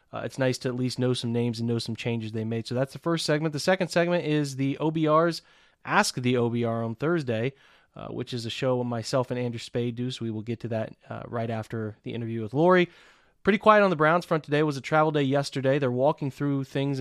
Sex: male